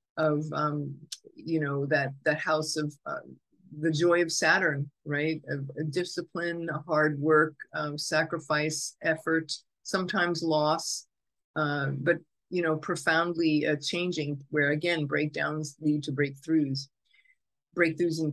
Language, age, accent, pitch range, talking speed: English, 50-69, American, 145-165 Hz, 130 wpm